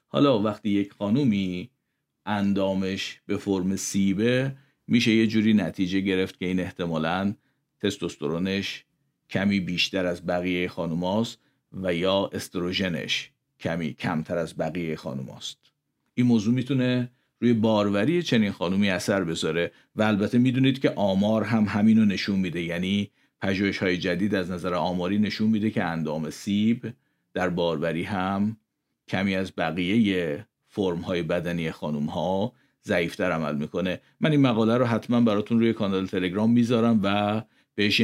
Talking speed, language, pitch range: 135 wpm, Persian, 90-115 Hz